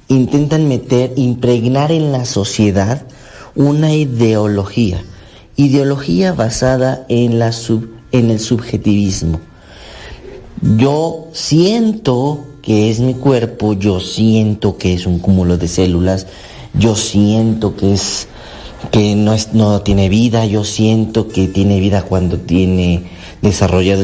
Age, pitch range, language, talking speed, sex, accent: 40-59, 100-130 Hz, Spanish, 120 wpm, male, Mexican